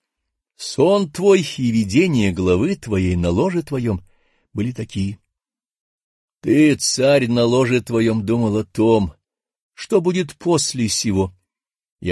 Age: 50-69